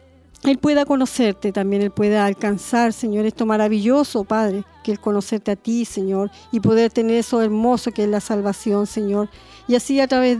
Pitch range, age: 215-245 Hz, 40-59